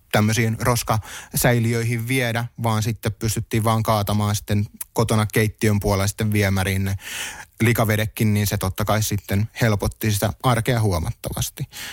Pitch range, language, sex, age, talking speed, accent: 100-120 Hz, Finnish, male, 30-49, 125 wpm, native